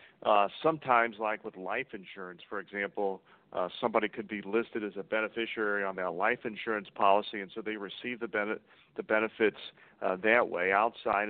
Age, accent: 40-59, American